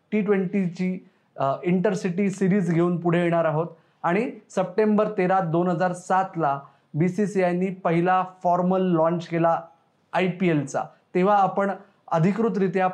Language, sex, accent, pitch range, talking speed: Marathi, male, native, 170-185 Hz, 125 wpm